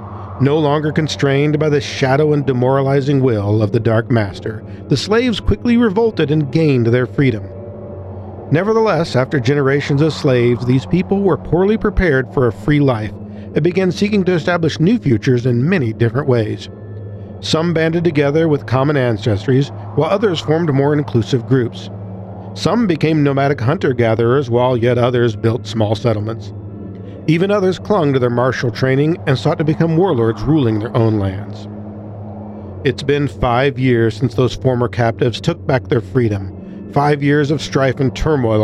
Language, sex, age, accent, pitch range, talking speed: English, male, 50-69, American, 110-150 Hz, 160 wpm